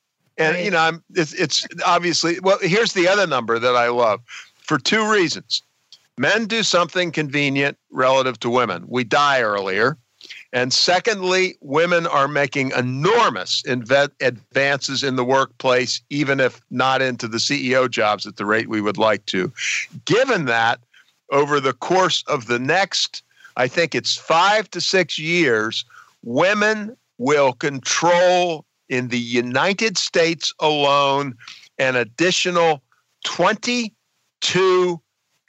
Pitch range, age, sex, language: 120-170 Hz, 50-69, male, English